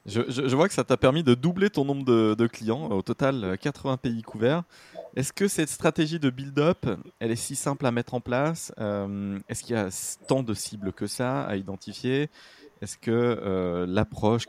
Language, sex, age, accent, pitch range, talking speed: French, male, 20-39, French, 100-140 Hz, 205 wpm